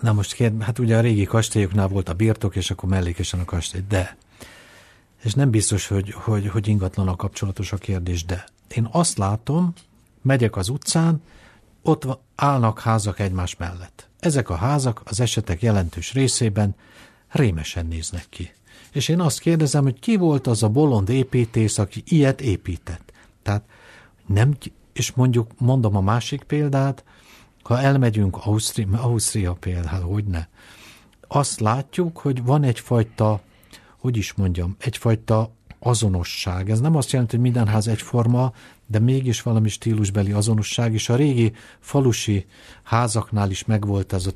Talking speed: 145 wpm